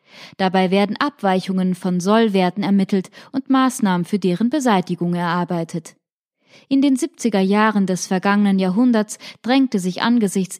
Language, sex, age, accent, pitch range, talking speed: German, female, 20-39, German, 190-245 Hz, 125 wpm